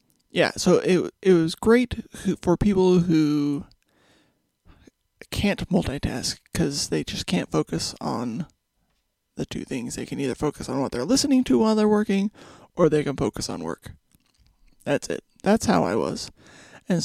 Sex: male